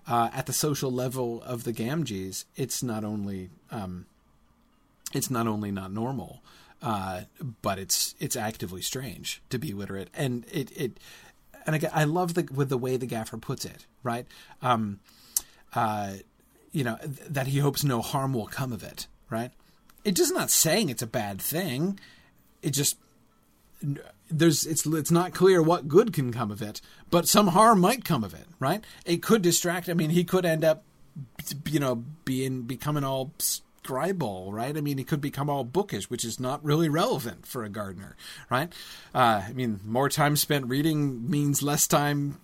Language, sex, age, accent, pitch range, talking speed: English, male, 40-59, American, 115-160 Hz, 180 wpm